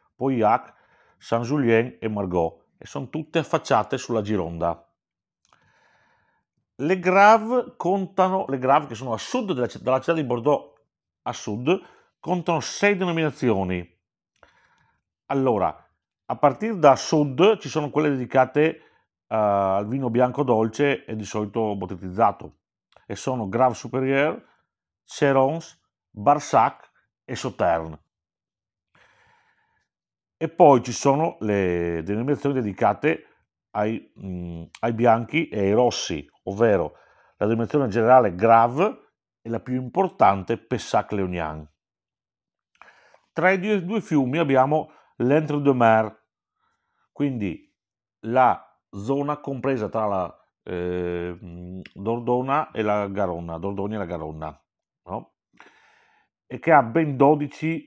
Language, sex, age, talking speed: Italian, male, 50-69, 110 wpm